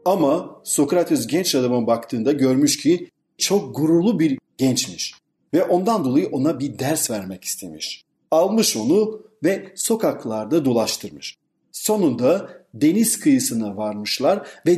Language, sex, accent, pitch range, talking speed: Turkish, male, native, 125-205 Hz, 120 wpm